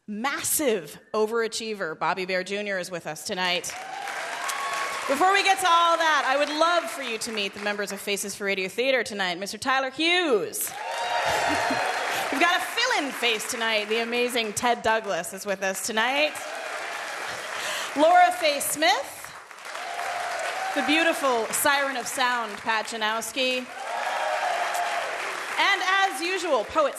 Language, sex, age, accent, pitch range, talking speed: English, female, 30-49, American, 205-300 Hz, 135 wpm